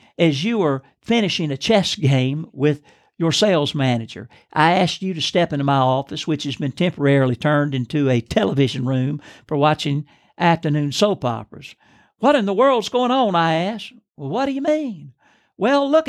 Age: 60-79